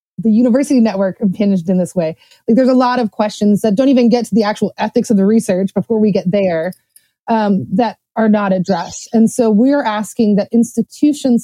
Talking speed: 205 wpm